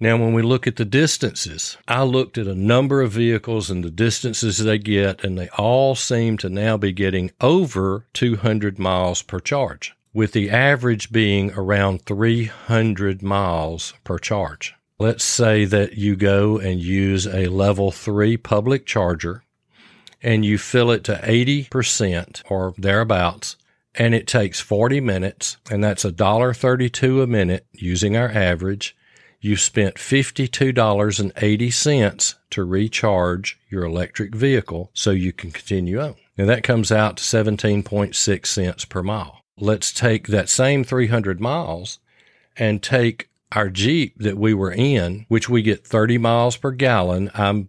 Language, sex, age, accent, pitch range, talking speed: English, male, 40-59, American, 95-115 Hz, 150 wpm